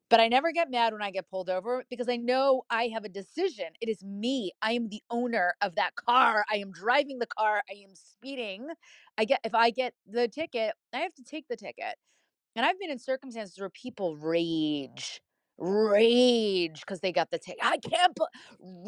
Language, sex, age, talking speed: English, female, 30-49, 205 wpm